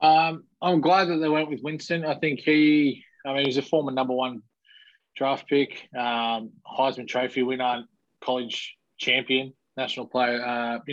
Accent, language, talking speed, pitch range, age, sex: Australian, English, 165 wpm, 120-135 Hz, 20-39, male